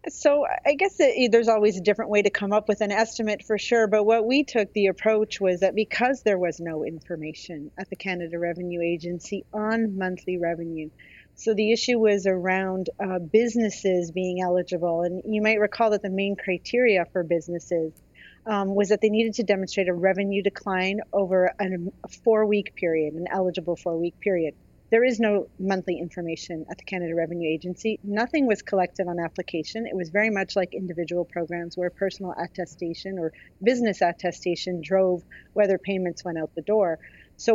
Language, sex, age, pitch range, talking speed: English, female, 40-59, 175-215 Hz, 175 wpm